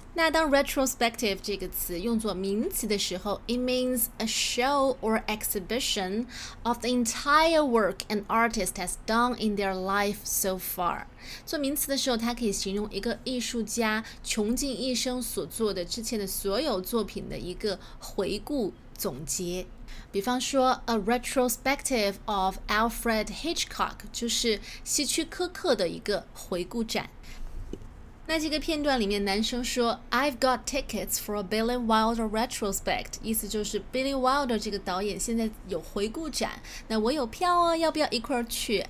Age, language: 20-39, Chinese